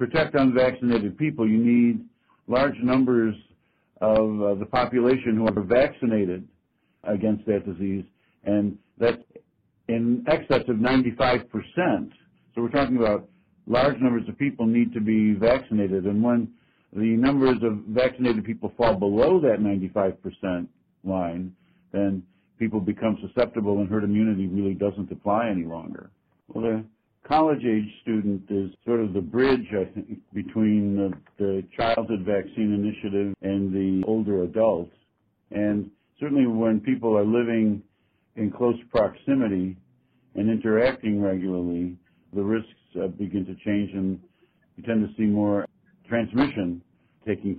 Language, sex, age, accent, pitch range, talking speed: English, male, 60-79, American, 100-120 Hz, 135 wpm